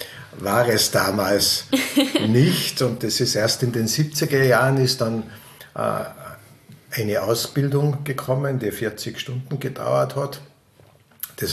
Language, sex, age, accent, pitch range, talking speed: German, male, 50-69, Austrian, 100-130 Hz, 120 wpm